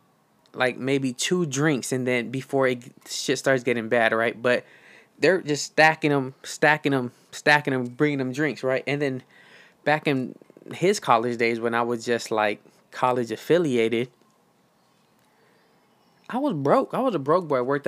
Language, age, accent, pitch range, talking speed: English, 20-39, American, 120-140 Hz, 170 wpm